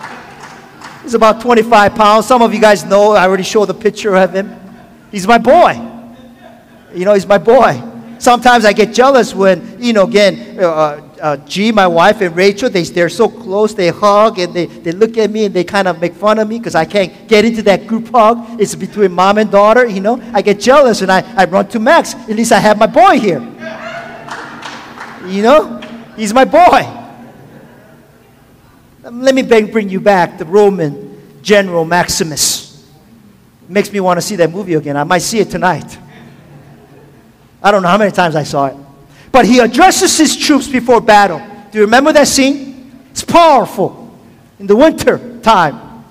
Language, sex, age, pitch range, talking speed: English, male, 40-59, 195-250 Hz, 185 wpm